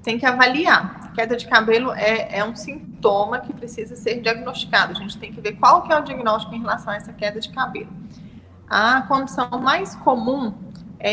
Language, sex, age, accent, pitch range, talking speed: Portuguese, female, 20-39, Brazilian, 215-250 Hz, 200 wpm